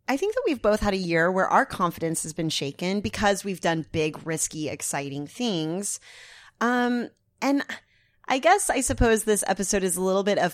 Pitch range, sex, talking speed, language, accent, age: 155-205 Hz, female, 195 wpm, English, American, 30-49